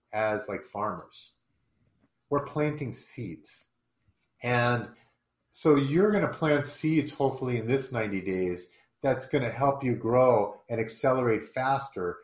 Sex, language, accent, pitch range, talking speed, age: male, English, American, 115-150 Hz, 125 wpm, 40-59